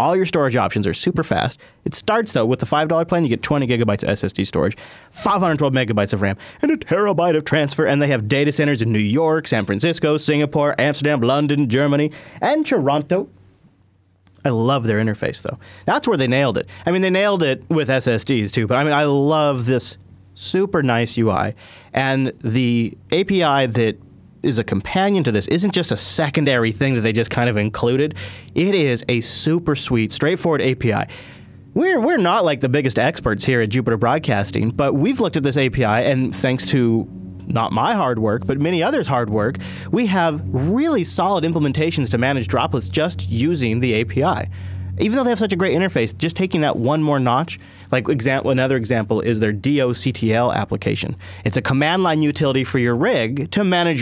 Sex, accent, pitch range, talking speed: male, American, 115-155 Hz, 190 wpm